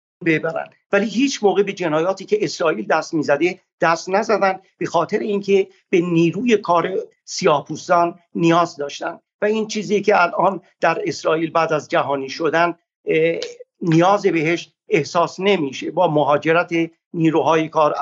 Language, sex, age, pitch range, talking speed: Persian, male, 50-69, 165-215 Hz, 135 wpm